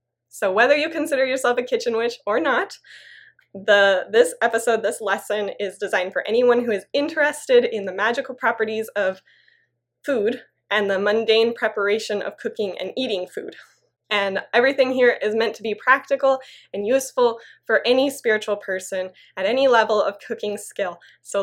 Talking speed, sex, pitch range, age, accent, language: 160 wpm, female, 200-265 Hz, 20-39, American, English